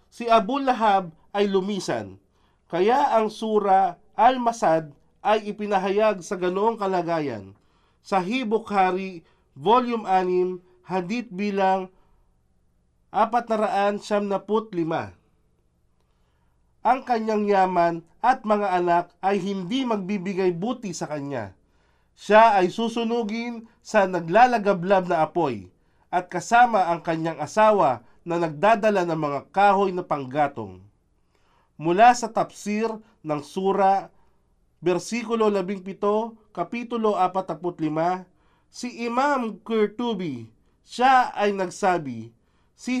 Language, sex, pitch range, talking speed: English, male, 170-225 Hz, 95 wpm